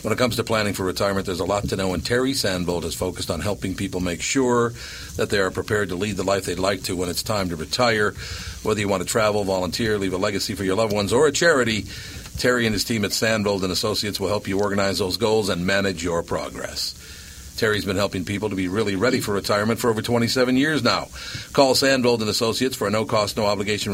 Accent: American